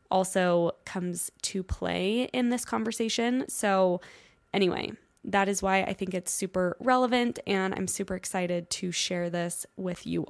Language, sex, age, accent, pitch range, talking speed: English, female, 10-29, American, 185-225 Hz, 150 wpm